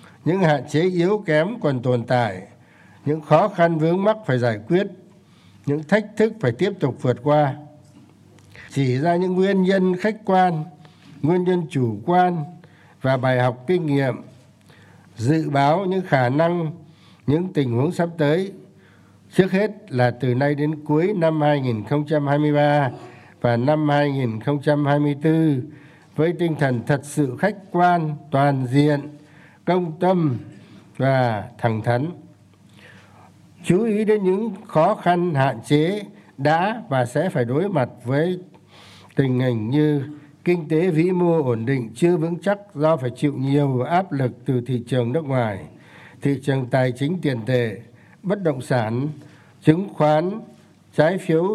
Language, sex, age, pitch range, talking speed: Vietnamese, male, 60-79, 125-170 Hz, 150 wpm